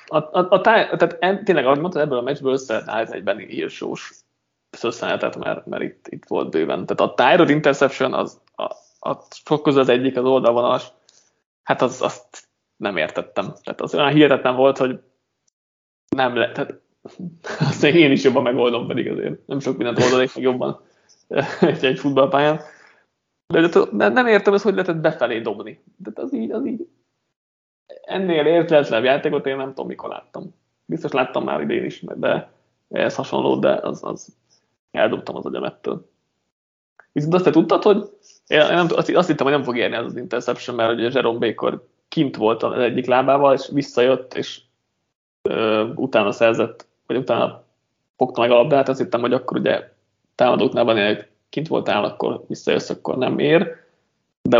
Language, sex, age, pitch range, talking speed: Hungarian, male, 20-39, 125-155 Hz, 170 wpm